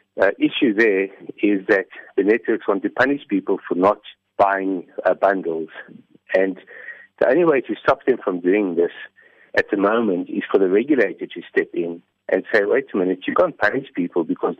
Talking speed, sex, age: 190 wpm, male, 60-79